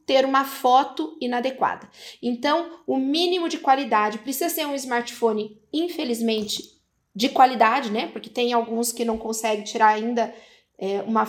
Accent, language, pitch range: Brazilian, Portuguese, 225-270 Hz